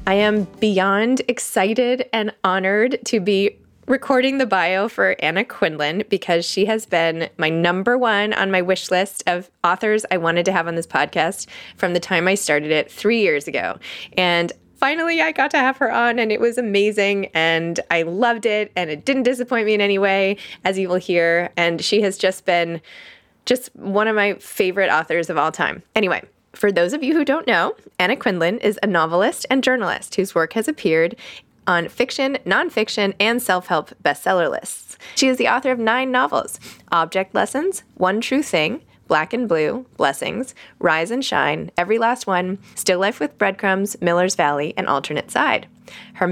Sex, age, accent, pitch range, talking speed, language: female, 20-39, American, 170-230 Hz, 185 wpm, English